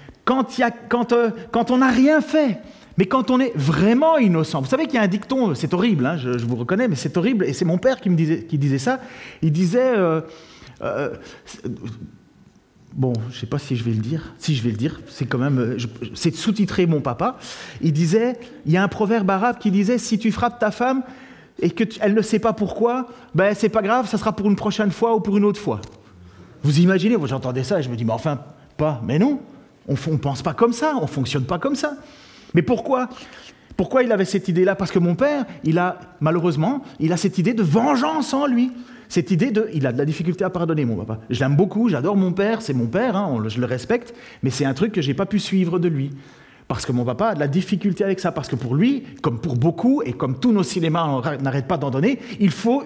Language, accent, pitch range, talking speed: French, French, 150-235 Hz, 260 wpm